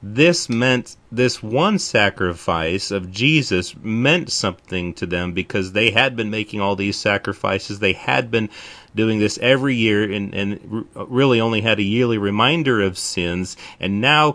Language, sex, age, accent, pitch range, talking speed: English, male, 30-49, American, 100-125 Hz, 165 wpm